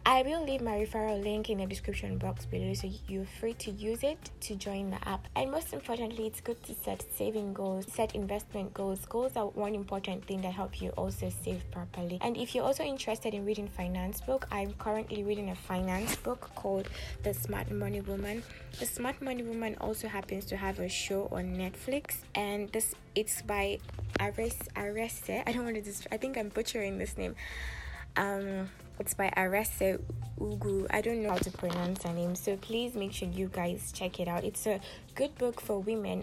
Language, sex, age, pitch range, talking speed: English, female, 20-39, 180-225 Hz, 205 wpm